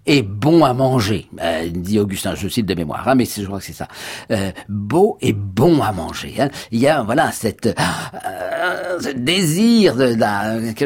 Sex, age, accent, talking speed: male, 50-69, French, 195 wpm